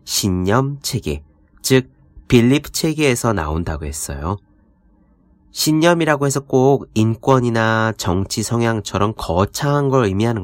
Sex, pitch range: male, 90-140 Hz